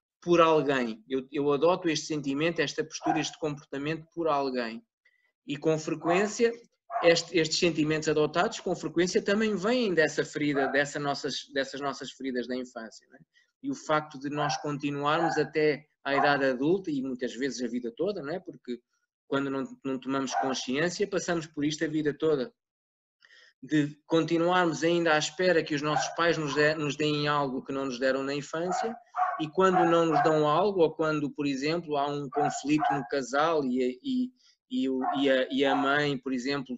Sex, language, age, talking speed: male, Portuguese, 20-39, 170 wpm